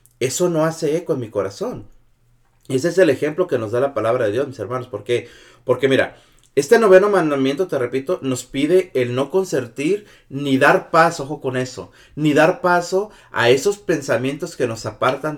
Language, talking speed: Spanish, 190 wpm